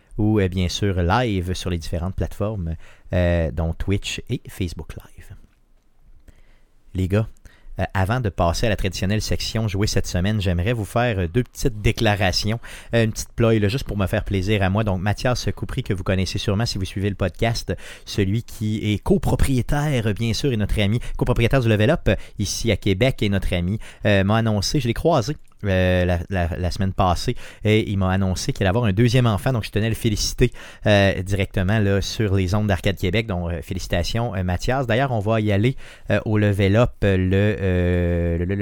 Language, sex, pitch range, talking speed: French, male, 95-120 Hz, 195 wpm